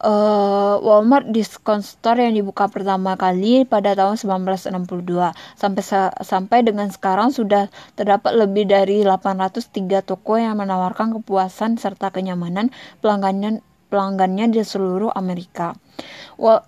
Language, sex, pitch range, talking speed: Indonesian, female, 190-220 Hz, 115 wpm